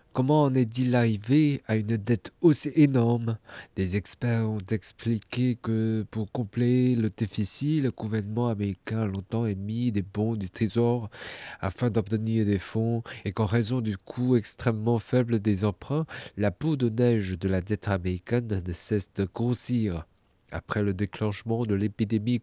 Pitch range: 105-125 Hz